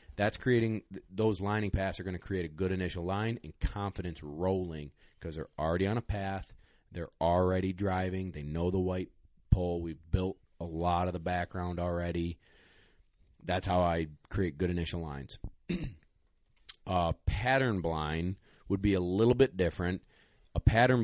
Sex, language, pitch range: male, English, 85-95 Hz